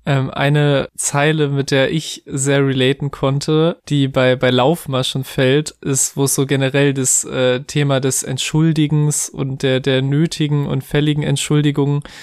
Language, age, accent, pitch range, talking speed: German, 20-39, German, 140-150 Hz, 145 wpm